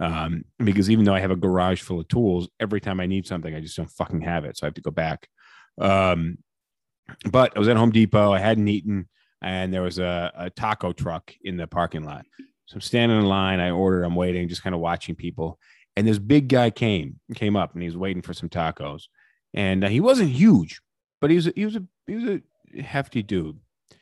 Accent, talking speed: American, 235 wpm